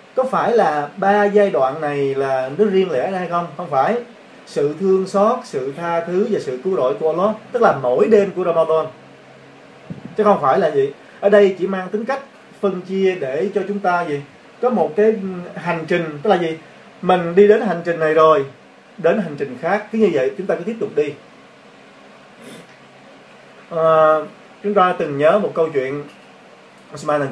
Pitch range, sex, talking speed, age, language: 145-205 Hz, male, 195 wpm, 20-39, Vietnamese